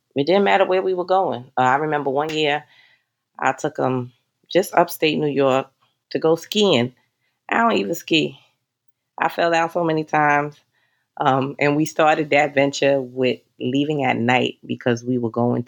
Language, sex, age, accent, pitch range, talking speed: English, female, 30-49, American, 125-165 Hz, 180 wpm